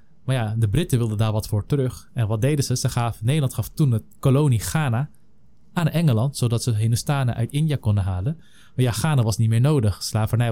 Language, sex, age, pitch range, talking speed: Dutch, male, 20-39, 110-140 Hz, 215 wpm